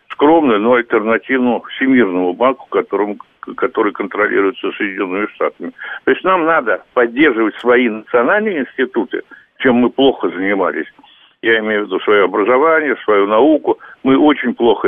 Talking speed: 135 wpm